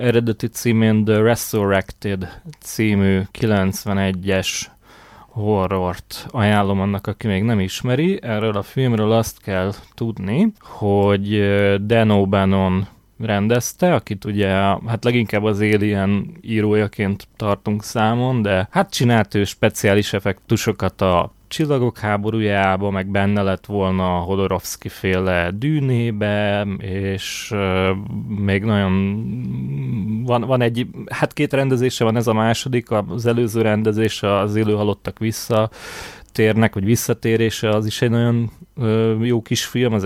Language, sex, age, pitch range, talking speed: Hungarian, male, 30-49, 100-120 Hz, 115 wpm